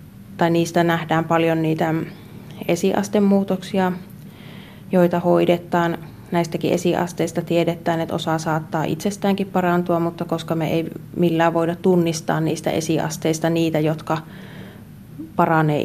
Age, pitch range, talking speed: 30-49, 160-175 Hz, 100 wpm